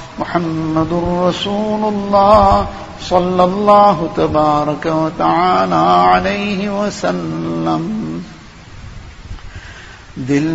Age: 50-69